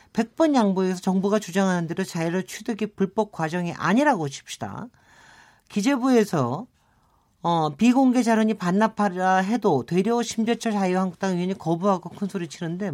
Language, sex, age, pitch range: Korean, male, 40-59, 155-215 Hz